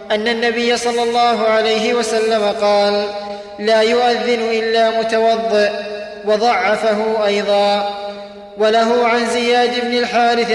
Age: 20-39